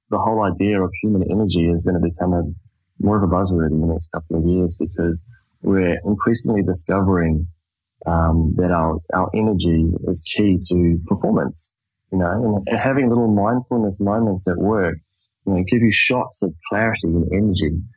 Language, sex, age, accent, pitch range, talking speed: English, male, 20-39, Australian, 85-105 Hz, 175 wpm